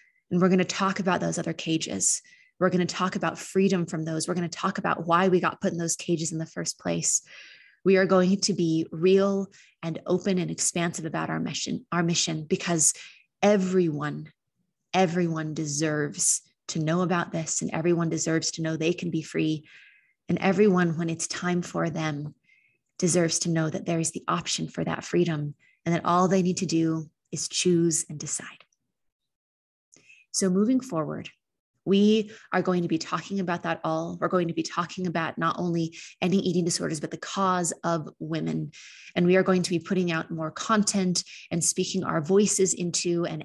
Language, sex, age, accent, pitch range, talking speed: English, female, 20-39, American, 165-190 Hz, 190 wpm